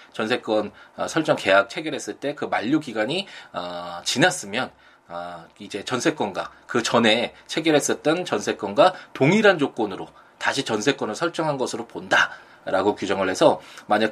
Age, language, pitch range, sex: 20-39, Korean, 100-145 Hz, male